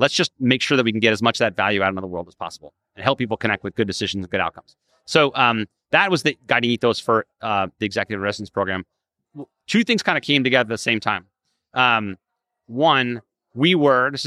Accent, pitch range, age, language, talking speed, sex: American, 110-135 Hz, 30-49, English, 240 wpm, male